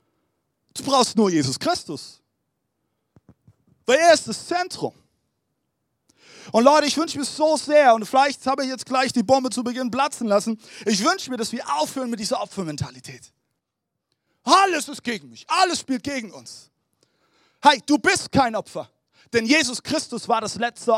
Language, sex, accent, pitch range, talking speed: German, male, German, 180-285 Hz, 165 wpm